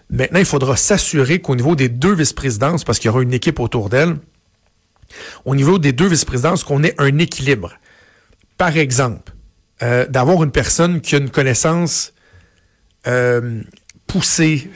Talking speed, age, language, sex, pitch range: 155 wpm, 60-79, French, male, 125-155 Hz